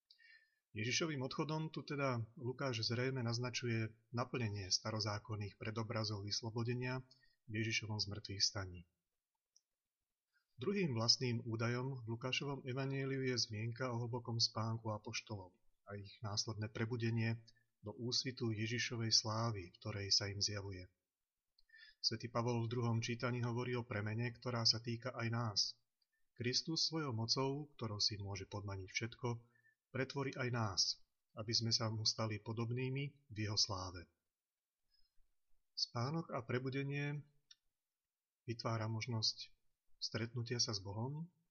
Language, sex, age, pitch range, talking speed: Slovak, male, 30-49, 110-125 Hz, 115 wpm